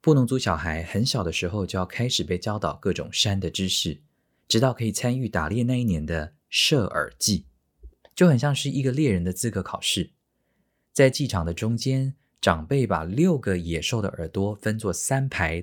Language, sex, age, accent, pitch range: Chinese, male, 20-39, native, 90-130 Hz